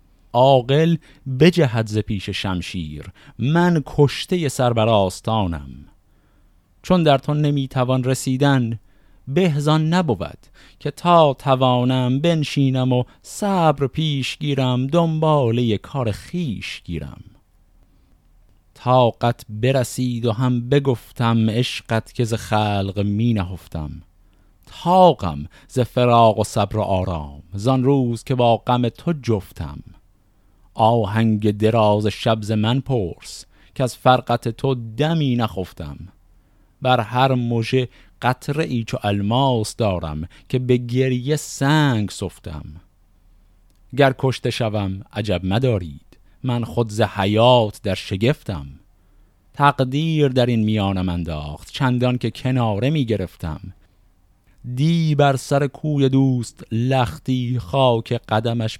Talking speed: 105 wpm